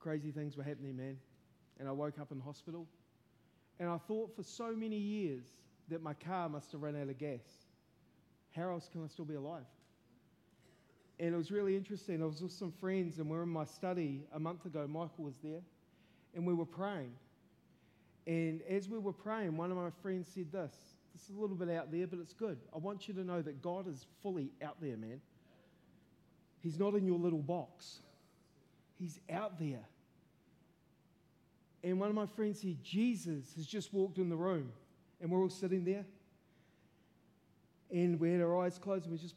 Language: English